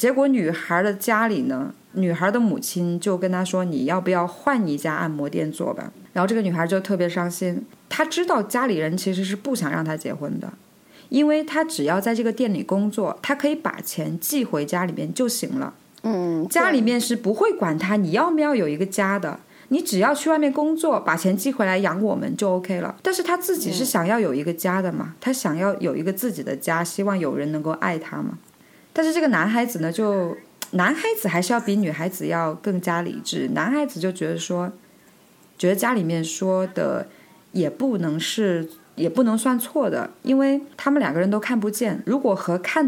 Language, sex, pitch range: Chinese, female, 175-265 Hz